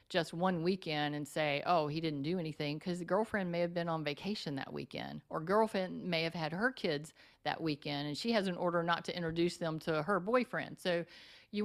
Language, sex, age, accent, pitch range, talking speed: English, female, 50-69, American, 150-175 Hz, 220 wpm